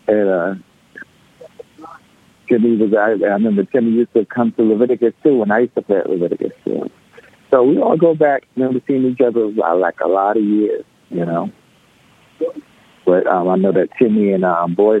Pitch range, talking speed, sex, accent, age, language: 95-130 Hz, 195 wpm, male, American, 50-69, English